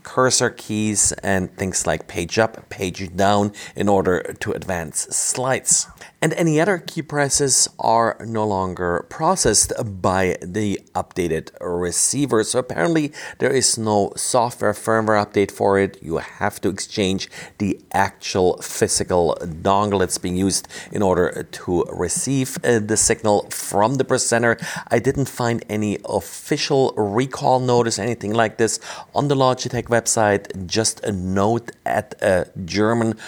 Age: 40-59